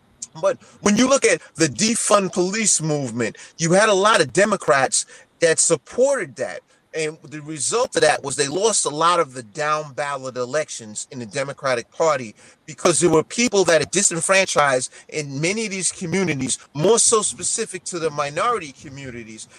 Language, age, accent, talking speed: English, 30-49, American, 170 wpm